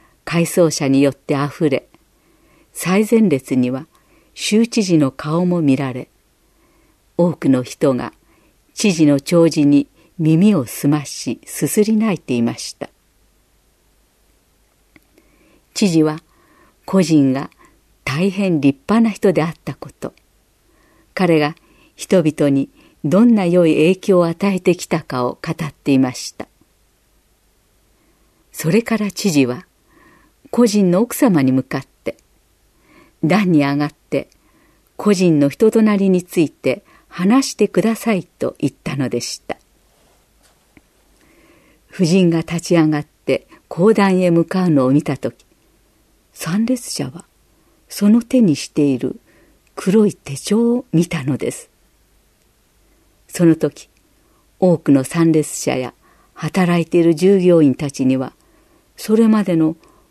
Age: 50-69